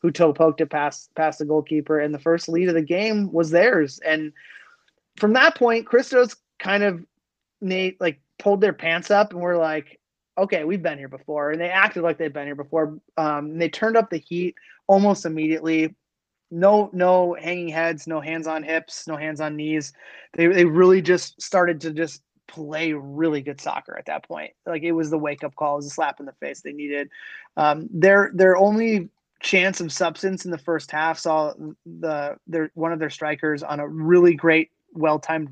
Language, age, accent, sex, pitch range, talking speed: English, 20-39, American, male, 155-180 Hz, 200 wpm